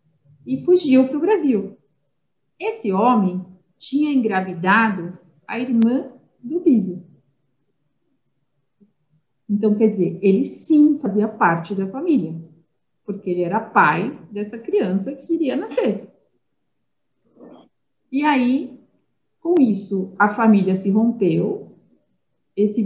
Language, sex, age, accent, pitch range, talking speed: Portuguese, female, 40-59, Brazilian, 180-245 Hz, 105 wpm